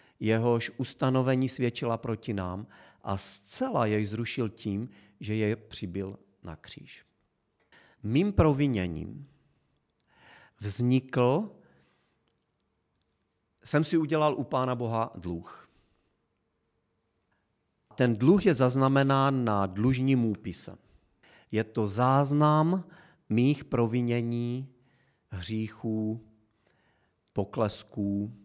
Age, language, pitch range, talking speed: 40-59, Czech, 105-140 Hz, 80 wpm